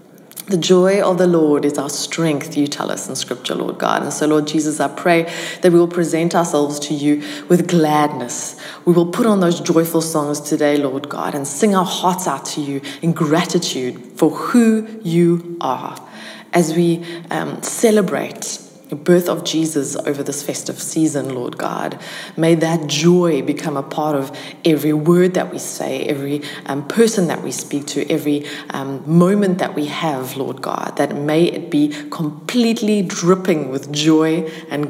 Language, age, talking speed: English, 20-39, 175 wpm